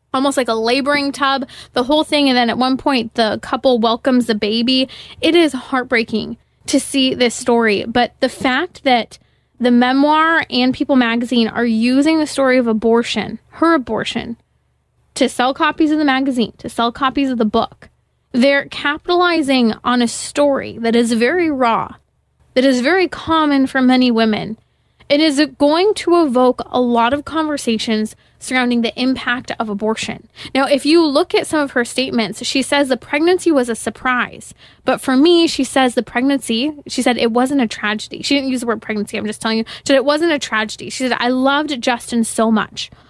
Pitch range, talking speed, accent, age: 230-285 Hz, 190 wpm, American, 20-39